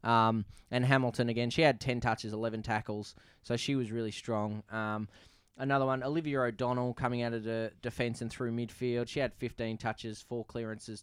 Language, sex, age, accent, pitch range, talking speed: English, male, 10-29, Australian, 110-130 Hz, 185 wpm